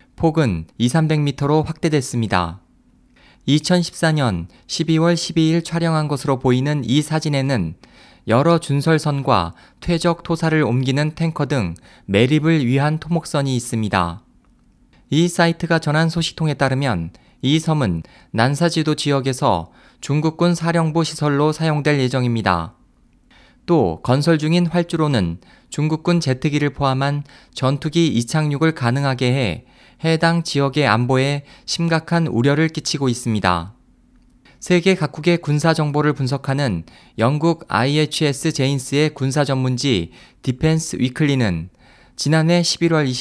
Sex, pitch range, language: male, 125-160 Hz, Korean